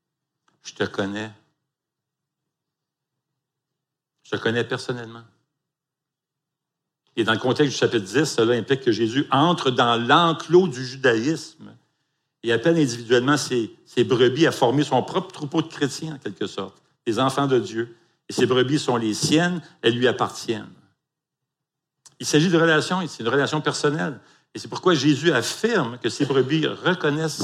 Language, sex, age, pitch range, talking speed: French, male, 60-79, 125-155 Hz, 155 wpm